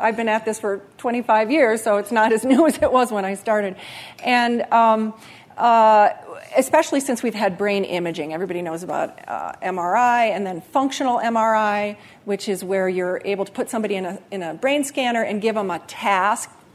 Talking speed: 195 wpm